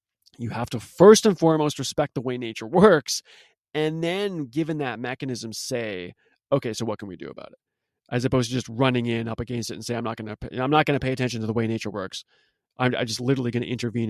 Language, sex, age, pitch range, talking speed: English, male, 30-49, 115-150 Hz, 230 wpm